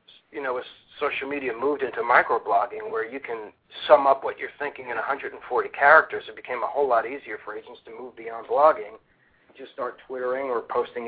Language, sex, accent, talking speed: English, male, American, 195 wpm